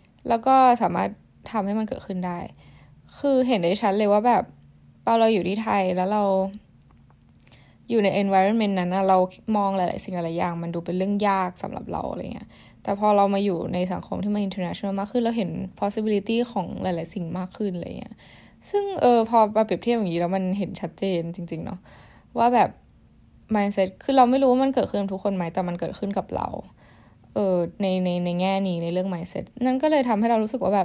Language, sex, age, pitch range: Thai, female, 10-29, 180-210 Hz